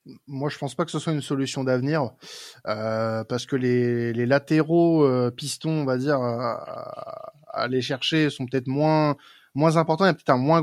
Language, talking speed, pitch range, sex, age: French, 205 wpm, 125-155 Hz, male, 20-39